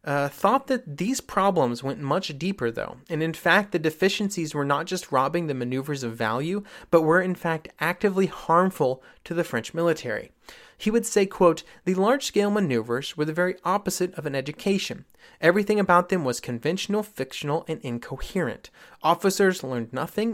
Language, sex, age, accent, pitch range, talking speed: English, male, 30-49, American, 135-185 Hz, 170 wpm